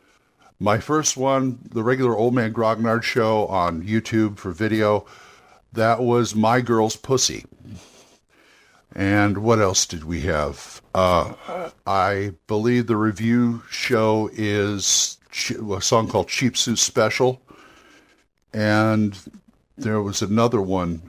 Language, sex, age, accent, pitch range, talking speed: English, male, 50-69, American, 95-115 Hz, 115 wpm